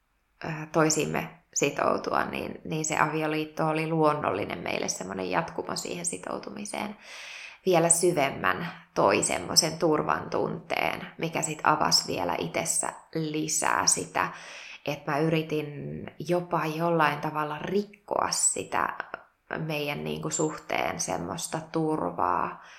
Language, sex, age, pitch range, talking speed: Finnish, female, 20-39, 150-165 Hz, 105 wpm